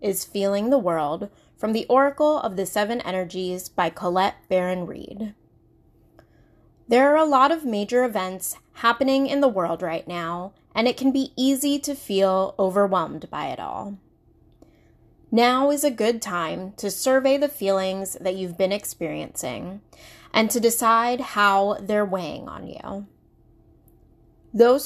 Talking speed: 145 wpm